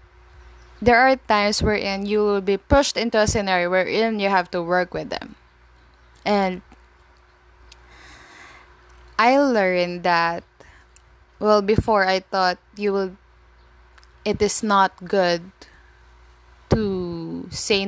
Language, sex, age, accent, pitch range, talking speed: English, female, 20-39, Filipino, 170-210 Hz, 115 wpm